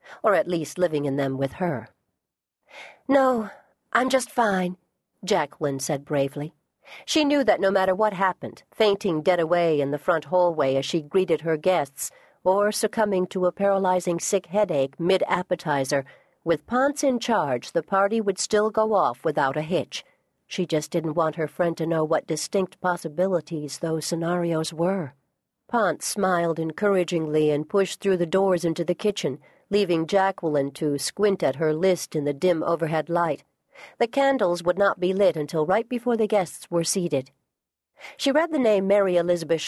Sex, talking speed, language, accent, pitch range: female, 170 wpm, English, American, 155-200 Hz